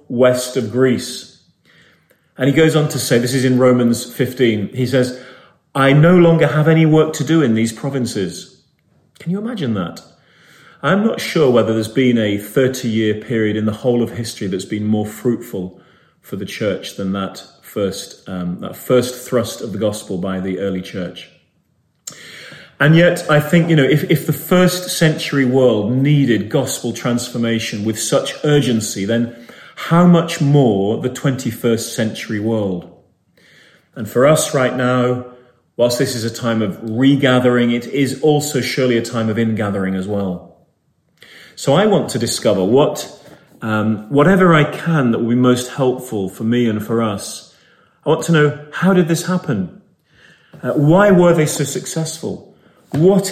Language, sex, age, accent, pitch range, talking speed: English, male, 30-49, British, 115-150 Hz, 165 wpm